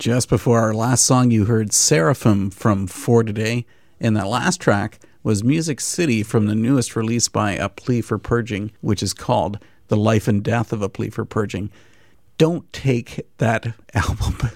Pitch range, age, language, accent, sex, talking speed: 110-135 Hz, 40-59, English, American, male, 175 wpm